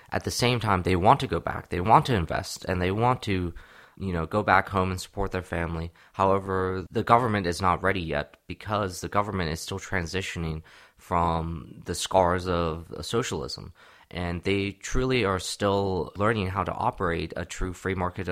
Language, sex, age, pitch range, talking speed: English, male, 20-39, 85-100 Hz, 185 wpm